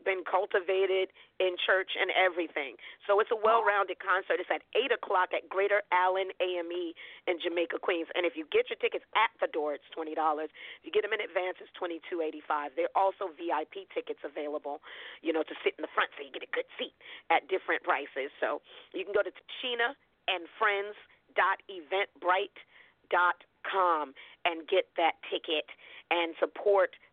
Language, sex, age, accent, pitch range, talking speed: English, female, 40-59, American, 165-205 Hz, 180 wpm